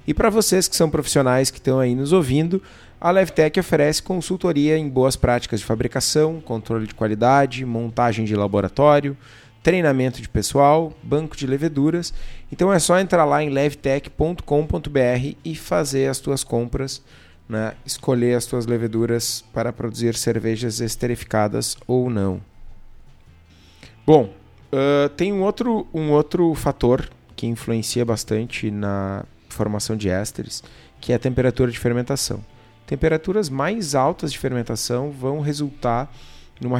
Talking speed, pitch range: 135 wpm, 110-140 Hz